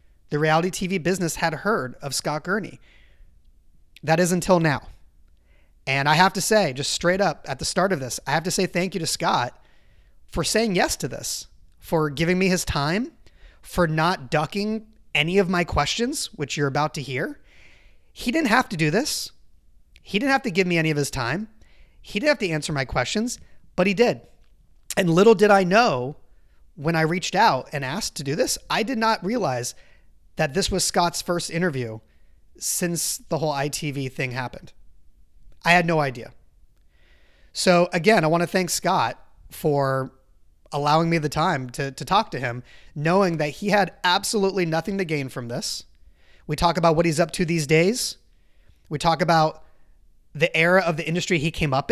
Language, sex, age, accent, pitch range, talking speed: English, male, 30-49, American, 135-185 Hz, 185 wpm